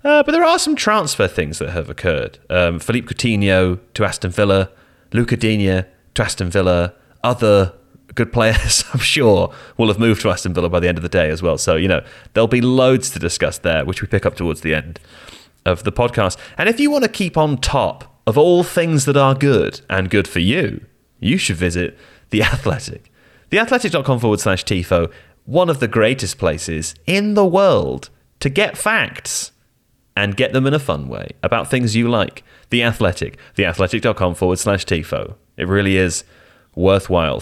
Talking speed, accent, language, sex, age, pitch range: 190 wpm, British, English, male, 30-49, 90-130 Hz